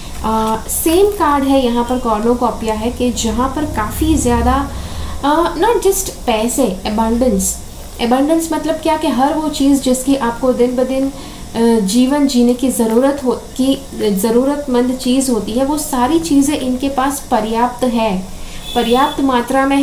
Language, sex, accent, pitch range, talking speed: English, female, Indian, 230-275 Hz, 140 wpm